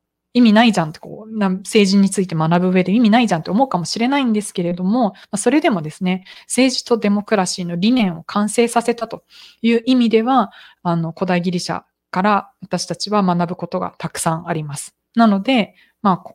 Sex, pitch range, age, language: female, 170-220 Hz, 20-39, Japanese